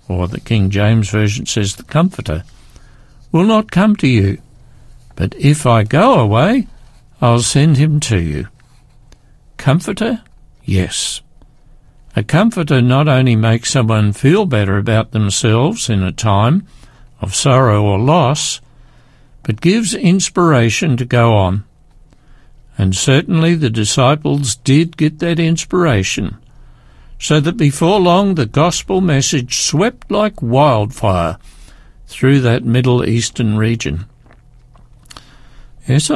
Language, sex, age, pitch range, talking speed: English, male, 60-79, 115-150 Hz, 120 wpm